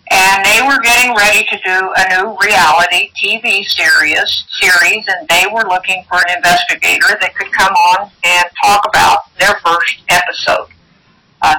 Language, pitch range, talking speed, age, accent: English, 180-265 Hz, 160 wpm, 60-79, American